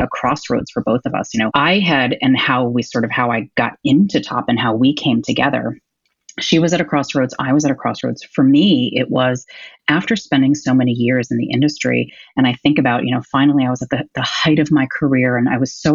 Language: English